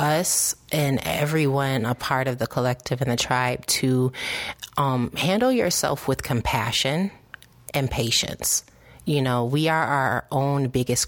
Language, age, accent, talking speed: English, 30-49, American, 140 wpm